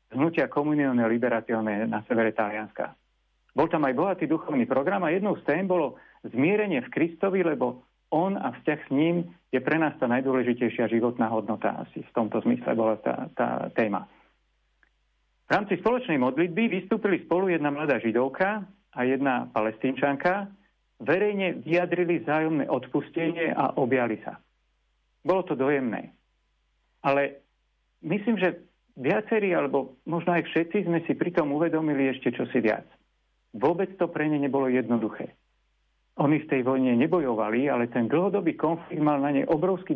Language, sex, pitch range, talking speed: Slovak, male, 125-175 Hz, 145 wpm